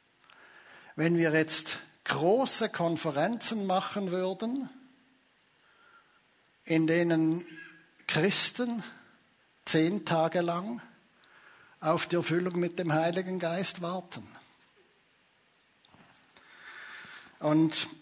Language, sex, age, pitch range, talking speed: German, male, 60-79, 155-195 Hz, 75 wpm